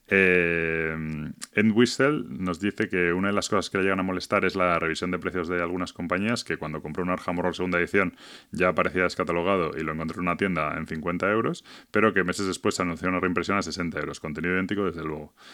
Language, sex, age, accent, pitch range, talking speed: Spanish, male, 30-49, Spanish, 85-95 Hz, 210 wpm